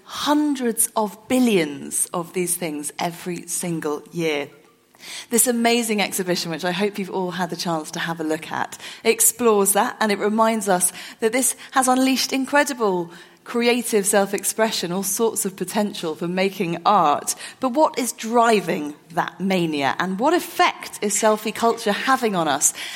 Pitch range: 175-225 Hz